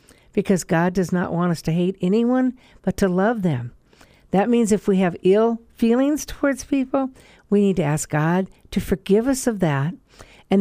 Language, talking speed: English, 185 wpm